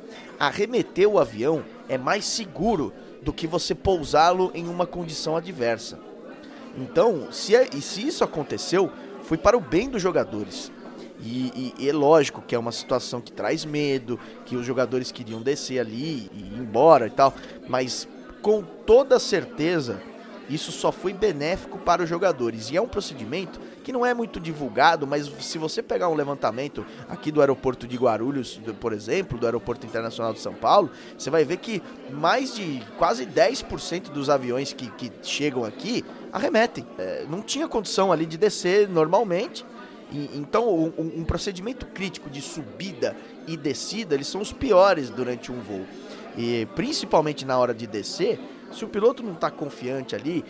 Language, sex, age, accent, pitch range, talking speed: Portuguese, male, 20-39, Brazilian, 125-195 Hz, 165 wpm